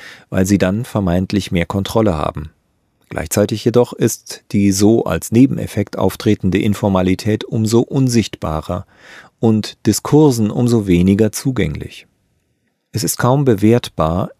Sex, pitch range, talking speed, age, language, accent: male, 95-120 Hz, 115 wpm, 40-59, German, German